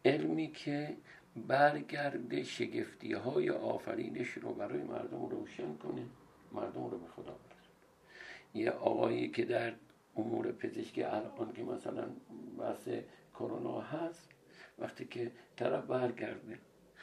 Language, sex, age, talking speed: Persian, male, 60-79, 115 wpm